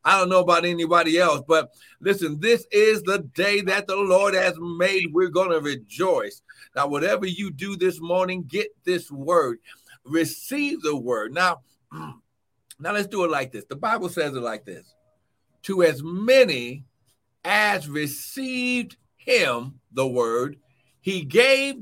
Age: 60-79